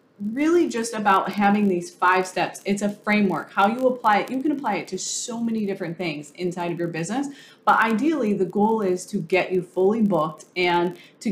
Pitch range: 180-225 Hz